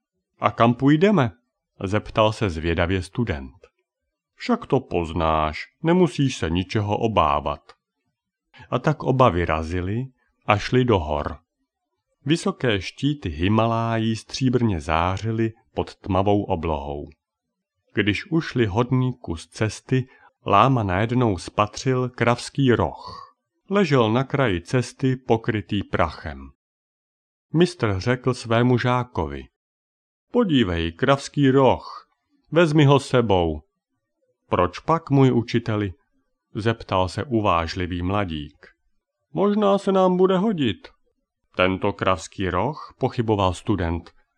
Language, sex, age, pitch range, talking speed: Czech, male, 40-59, 95-130 Hz, 100 wpm